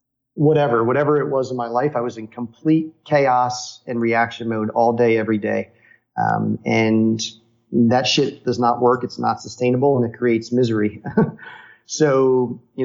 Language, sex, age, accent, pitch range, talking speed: English, male, 30-49, American, 120-135 Hz, 165 wpm